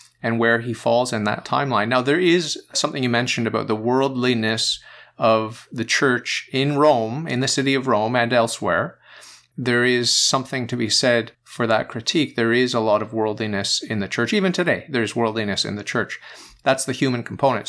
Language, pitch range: English, 110-130 Hz